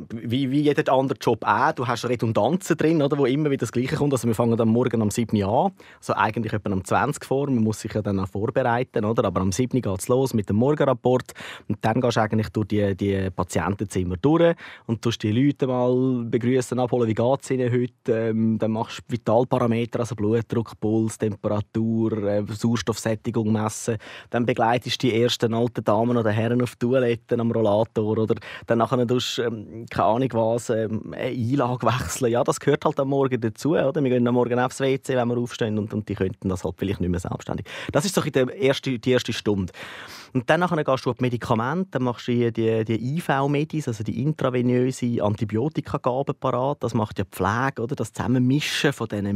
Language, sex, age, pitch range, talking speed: German, male, 20-39, 110-130 Hz, 210 wpm